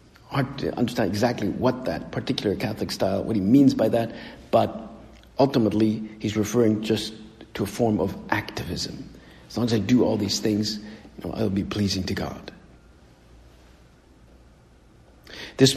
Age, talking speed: 60-79, 150 wpm